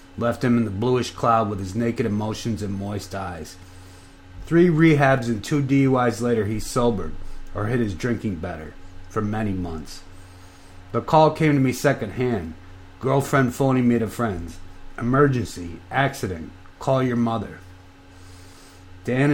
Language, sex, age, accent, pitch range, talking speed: English, male, 30-49, American, 90-120 Hz, 145 wpm